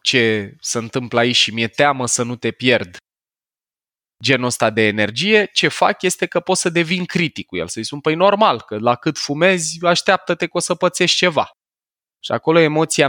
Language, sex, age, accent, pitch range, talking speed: Romanian, male, 20-39, native, 110-155 Hz, 195 wpm